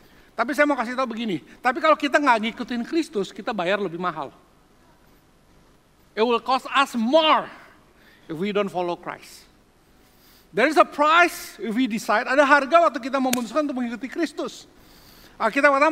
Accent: Indonesian